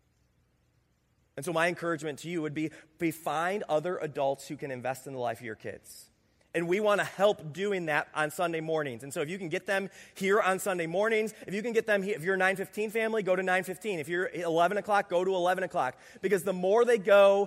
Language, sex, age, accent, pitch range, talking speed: English, male, 30-49, American, 155-195 Hz, 240 wpm